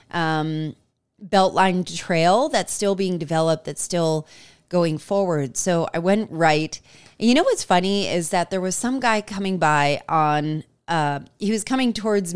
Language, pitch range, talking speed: English, 160-210 Hz, 160 wpm